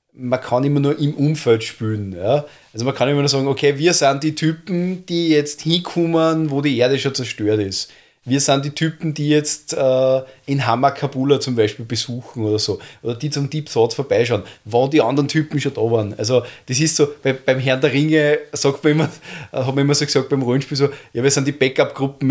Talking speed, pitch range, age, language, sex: 215 wpm, 120-150 Hz, 30-49, German, male